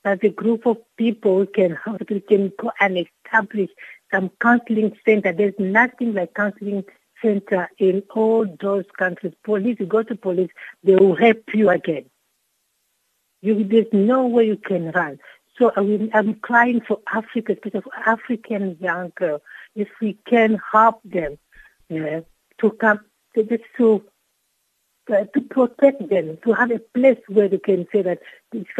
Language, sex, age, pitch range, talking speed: English, female, 60-79, 175-225 Hz, 155 wpm